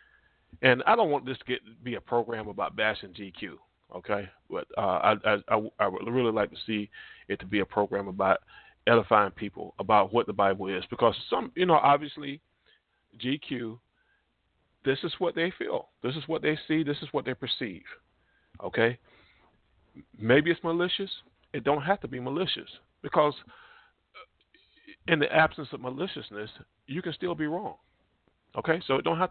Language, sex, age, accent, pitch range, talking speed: English, male, 40-59, American, 105-150 Hz, 170 wpm